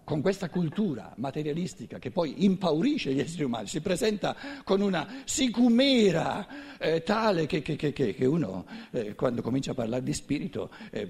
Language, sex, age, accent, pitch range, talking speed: Italian, male, 60-79, native, 150-240 Hz, 160 wpm